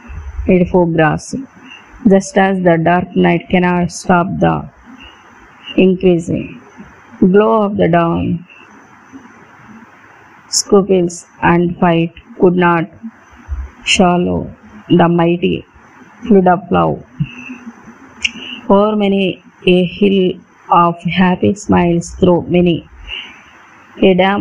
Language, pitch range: Telugu, 175-200 Hz